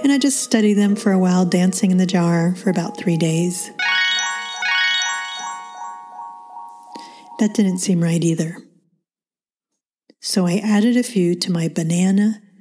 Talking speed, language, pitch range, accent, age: 140 wpm, English, 175-215 Hz, American, 40-59